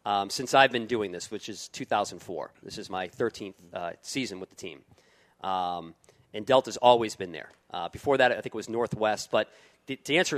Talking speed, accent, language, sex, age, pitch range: 210 wpm, American, English, male, 40-59, 110-135 Hz